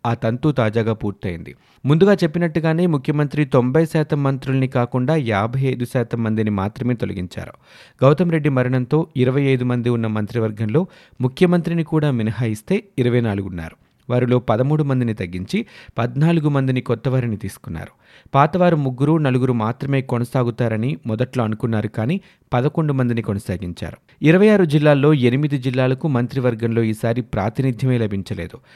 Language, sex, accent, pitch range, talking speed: Telugu, male, native, 115-150 Hz, 110 wpm